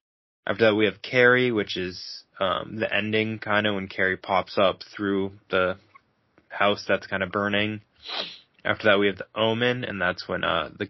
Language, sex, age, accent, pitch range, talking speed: English, male, 20-39, American, 95-110 Hz, 175 wpm